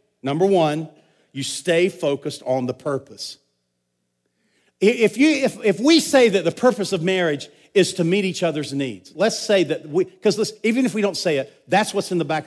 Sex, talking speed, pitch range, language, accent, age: male, 195 wpm, 165-245 Hz, English, American, 50-69